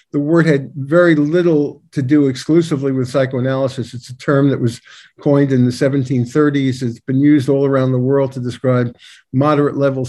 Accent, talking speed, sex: American, 180 wpm, male